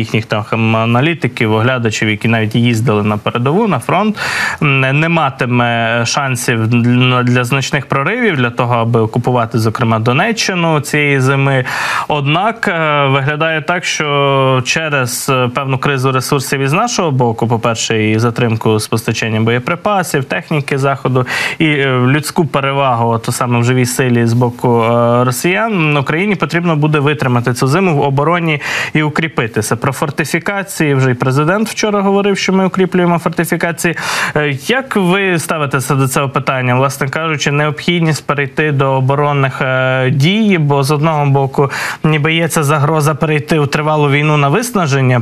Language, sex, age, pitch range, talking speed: Ukrainian, male, 20-39, 125-155 Hz, 135 wpm